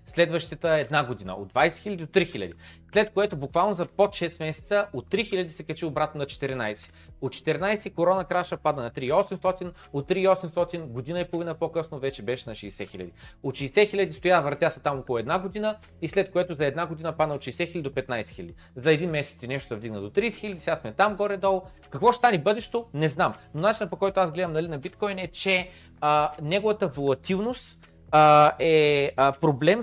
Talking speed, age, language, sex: 205 wpm, 30-49, Bulgarian, male